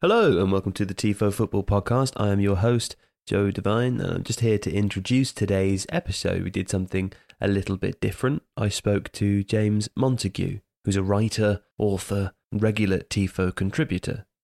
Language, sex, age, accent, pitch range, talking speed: English, male, 20-39, British, 95-110 Hz, 170 wpm